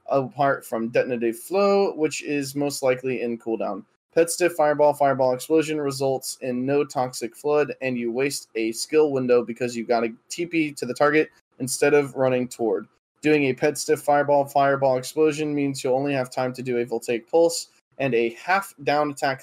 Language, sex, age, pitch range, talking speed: English, male, 20-39, 130-155 Hz, 180 wpm